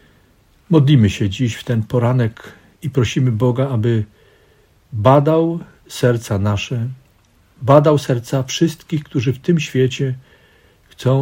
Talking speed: 110 wpm